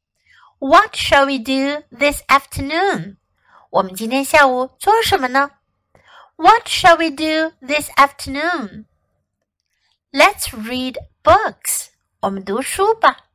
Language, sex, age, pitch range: Chinese, female, 60-79, 225-355 Hz